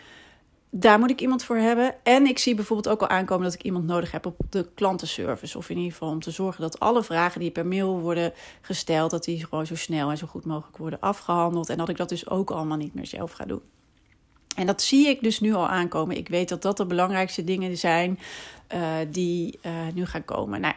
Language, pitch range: Dutch, 175-210 Hz